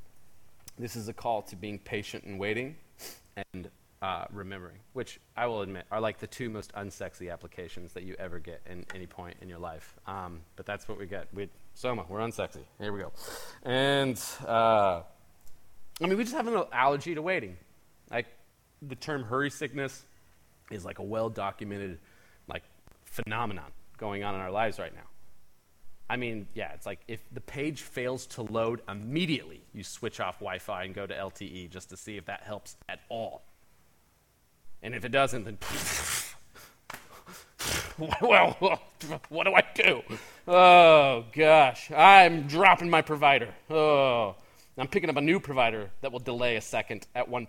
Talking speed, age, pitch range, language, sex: 170 wpm, 30-49, 95-130 Hz, English, male